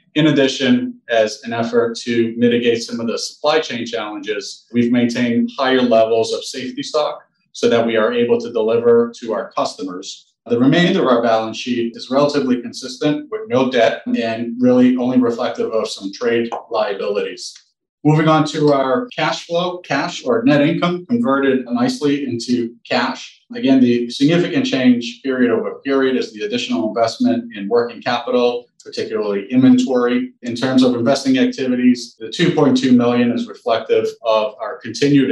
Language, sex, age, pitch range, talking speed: English, male, 30-49, 120-150 Hz, 160 wpm